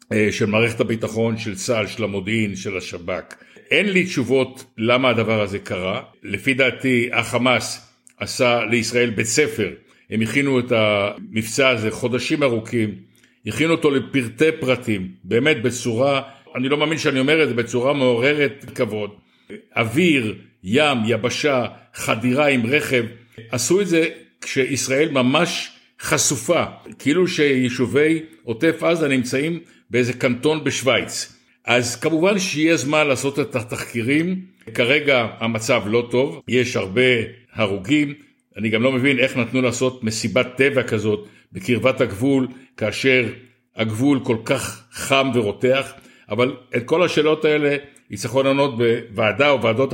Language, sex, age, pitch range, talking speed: Hebrew, male, 60-79, 115-135 Hz, 130 wpm